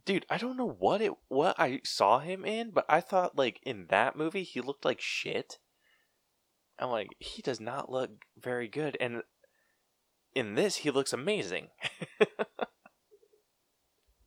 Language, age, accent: English, 20-39, American